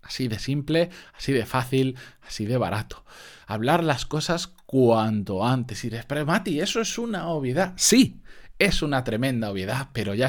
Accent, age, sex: Spanish, 20-39, male